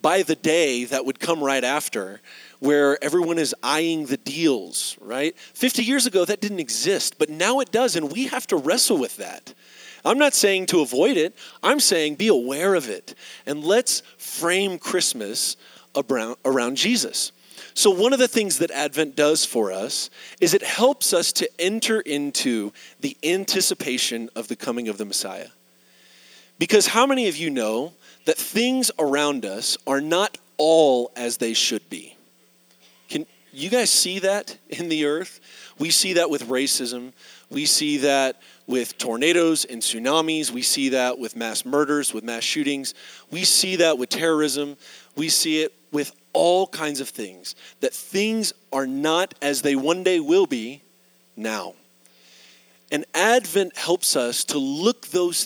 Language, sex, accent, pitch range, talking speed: English, male, American, 130-195 Hz, 165 wpm